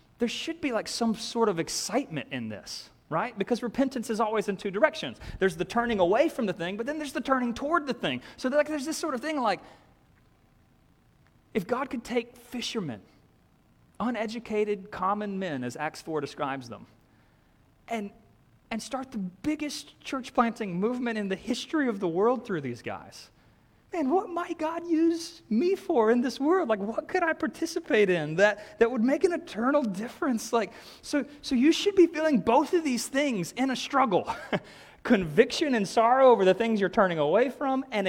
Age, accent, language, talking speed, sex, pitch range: 30-49, American, English, 185 wpm, male, 175-270 Hz